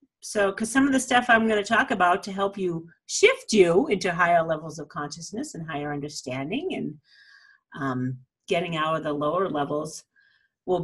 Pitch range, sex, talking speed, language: 160-220 Hz, female, 185 wpm, English